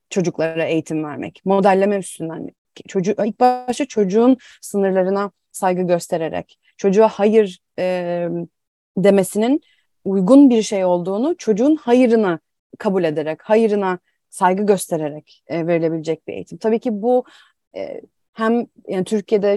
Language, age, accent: Turkish, 30-49, native